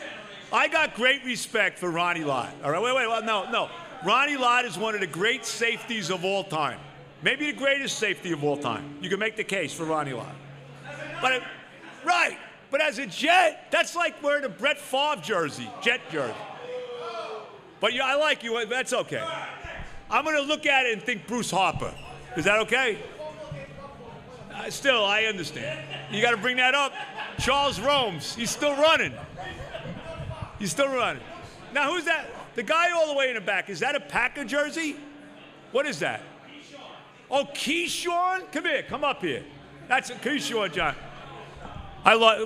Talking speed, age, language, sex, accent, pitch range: 175 wpm, 50-69, English, male, American, 185-285 Hz